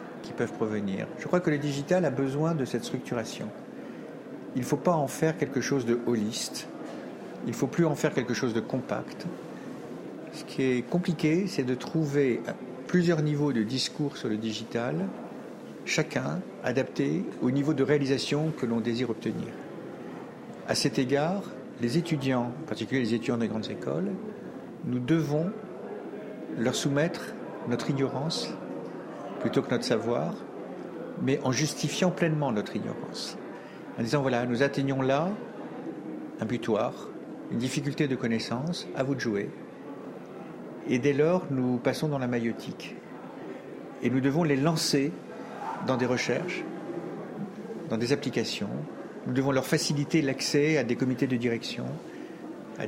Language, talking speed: French, 150 wpm